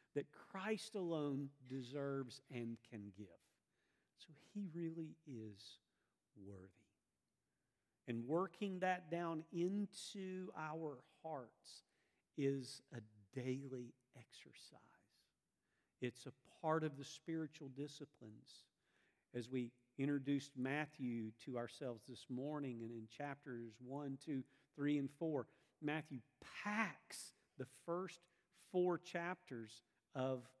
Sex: male